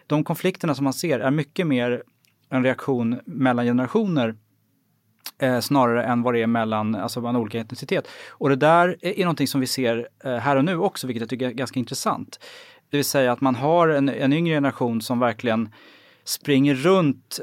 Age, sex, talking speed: 20-39, male, 195 wpm